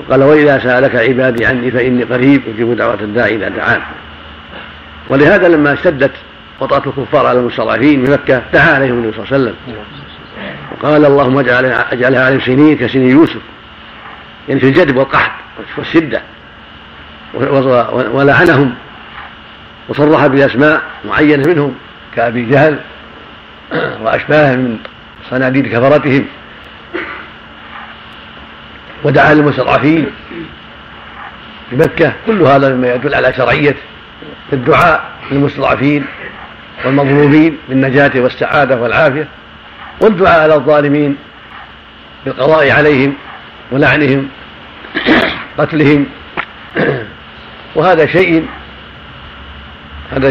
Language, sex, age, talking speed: Arabic, male, 50-69, 90 wpm